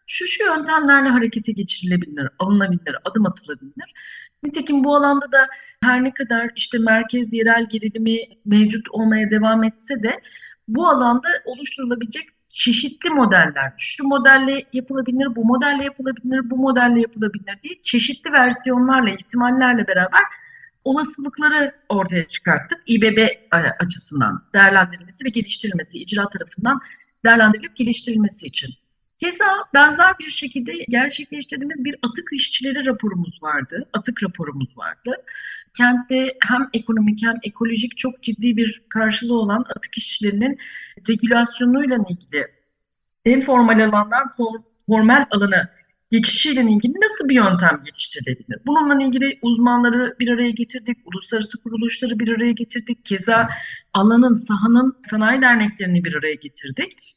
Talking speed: 120 wpm